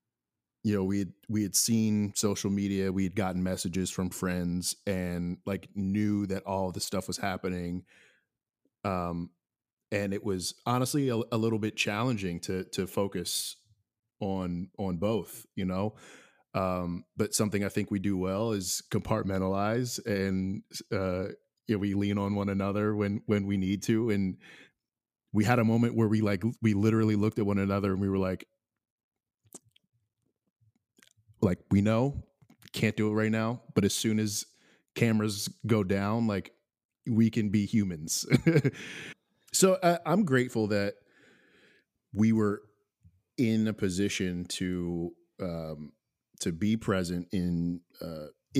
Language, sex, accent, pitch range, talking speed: English, male, American, 95-110 Hz, 150 wpm